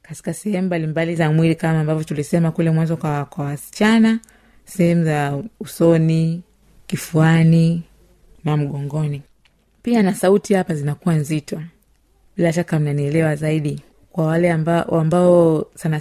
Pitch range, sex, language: 160-205 Hz, female, Swahili